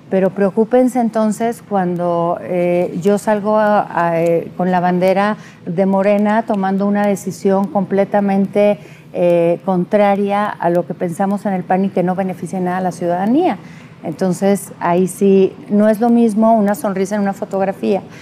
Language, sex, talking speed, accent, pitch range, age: Spanish, female, 160 wpm, Mexican, 190-225 Hz, 40-59